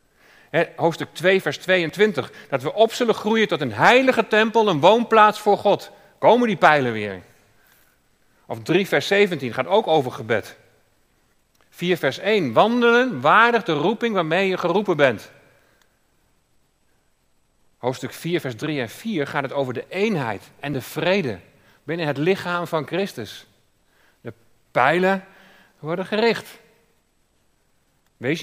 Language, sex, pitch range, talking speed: Dutch, male, 135-190 Hz, 135 wpm